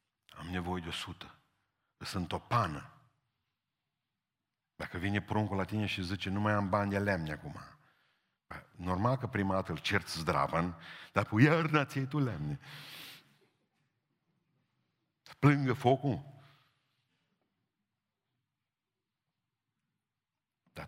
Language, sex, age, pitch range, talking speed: Romanian, male, 50-69, 90-120 Hz, 110 wpm